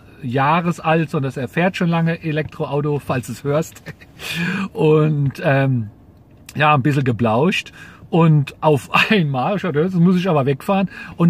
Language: German